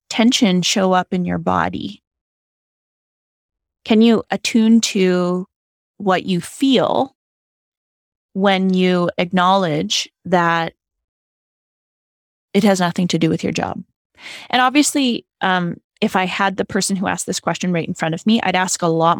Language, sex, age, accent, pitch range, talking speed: English, female, 20-39, American, 175-230 Hz, 145 wpm